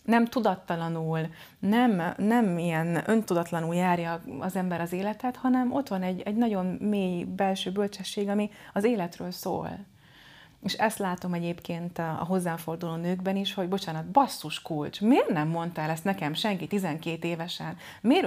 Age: 30-49